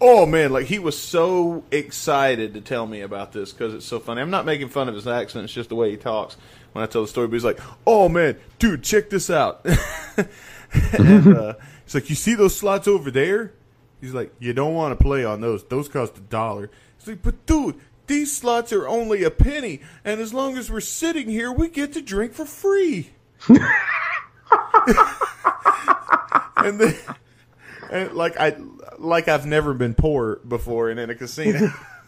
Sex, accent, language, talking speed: male, American, English, 200 wpm